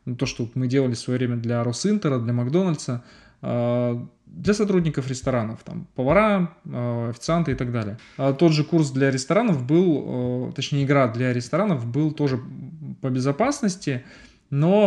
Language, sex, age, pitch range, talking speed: Russian, male, 20-39, 120-155 Hz, 135 wpm